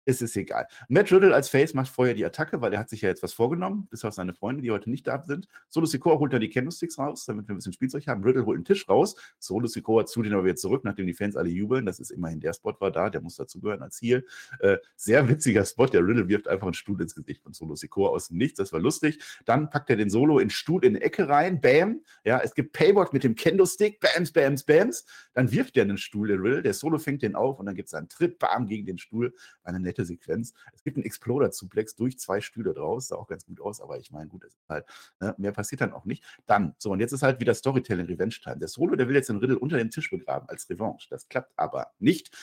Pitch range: 110-155 Hz